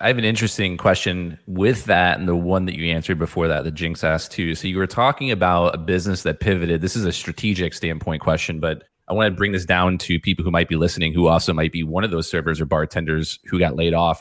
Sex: male